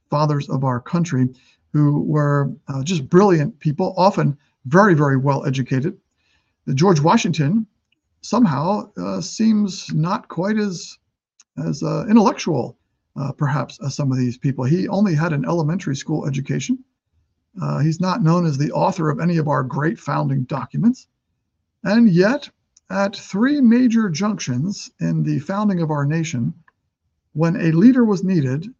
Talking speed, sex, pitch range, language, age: 150 wpm, male, 140-205 Hz, English, 50-69